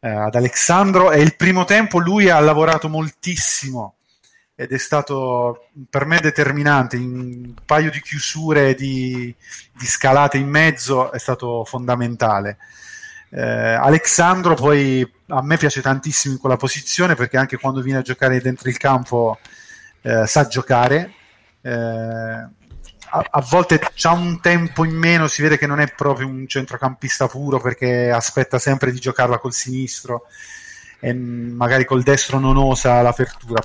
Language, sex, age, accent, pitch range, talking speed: Italian, male, 30-49, native, 120-150 Hz, 150 wpm